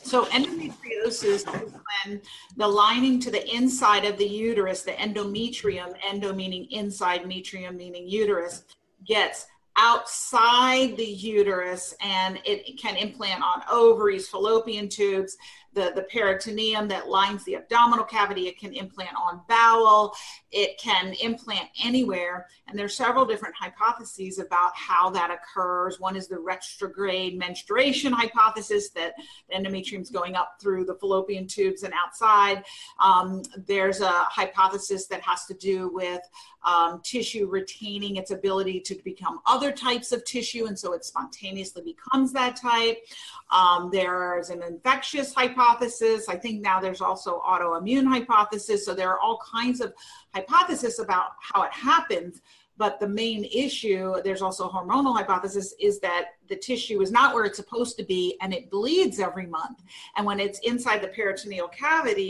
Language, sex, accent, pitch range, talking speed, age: English, female, American, 185-235 Hz, 150 wpm, 40-59